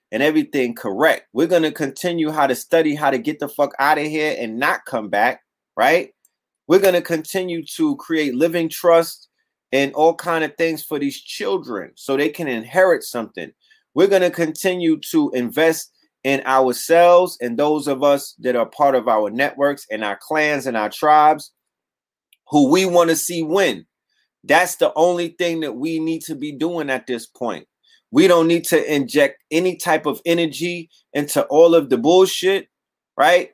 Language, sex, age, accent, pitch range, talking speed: English, male, 30-49, American, 145-175 Hz, 180 wpm